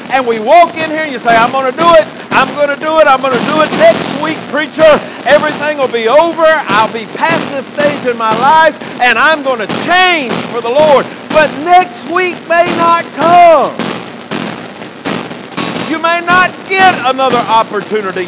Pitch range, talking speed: 215-310 Hz, 190 wpm